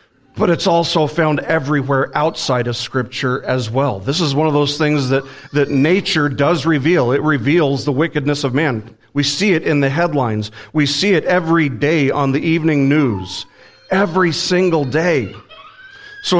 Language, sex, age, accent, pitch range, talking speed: English, male, 40-59, American, 120-155 Hz, 170 wpm